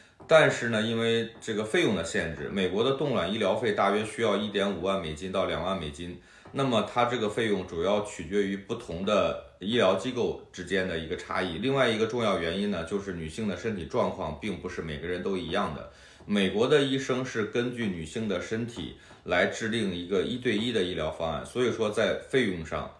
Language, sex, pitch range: Chinese, male, 85-110 Hz